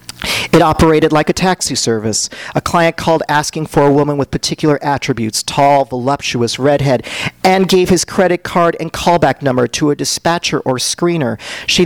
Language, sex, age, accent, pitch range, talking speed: English, male, 40-59, American, 140-175 Hz, 165 wpm